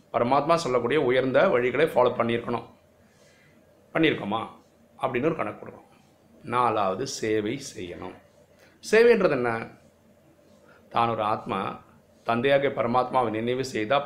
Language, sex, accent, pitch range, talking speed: Tamil, male, native, 115-140 Hz, 100 wpm